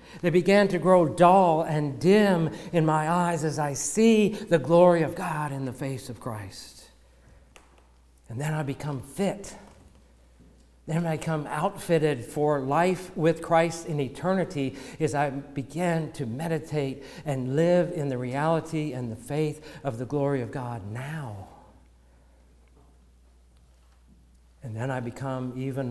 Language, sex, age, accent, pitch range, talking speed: English, male, 60-79, American, 95-155 Hz, 140 wpm